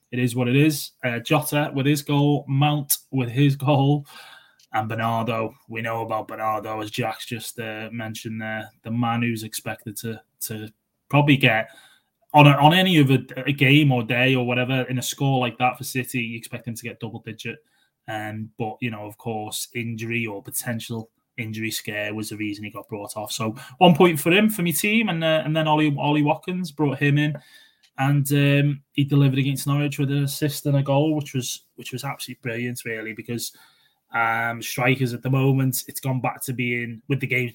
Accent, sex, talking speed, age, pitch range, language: British, male, 210 wpm, 20-39, 115-145 Hz, English